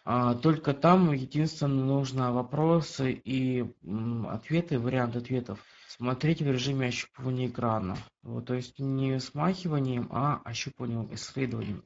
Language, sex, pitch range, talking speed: Russian, male, 125-150 Hz, 110 wpm